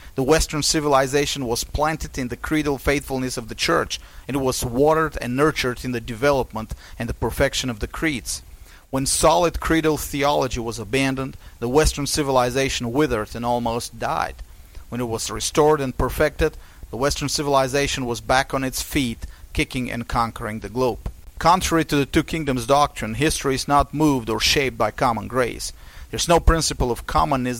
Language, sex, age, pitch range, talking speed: English, male, 30-49, 115-145 Hz, 170 wpm